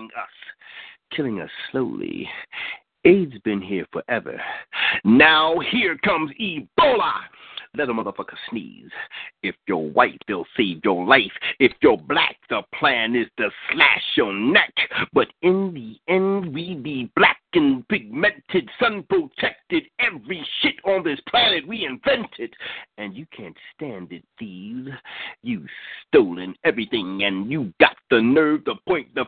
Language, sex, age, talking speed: English, male, 50-69, 135 wpm